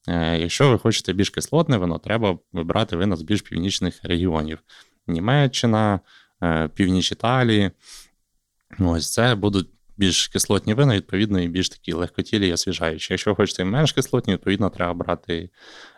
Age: 20-39